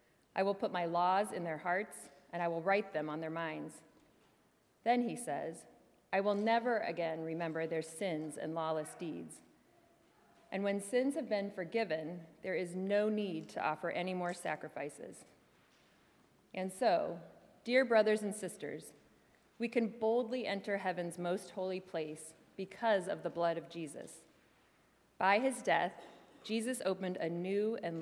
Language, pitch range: English, 160-205 Hz